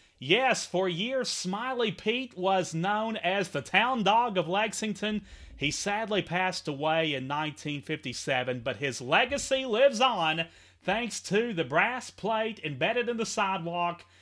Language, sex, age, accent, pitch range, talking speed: English, male, 30-49, American, 145-205 Hz, 140 wpm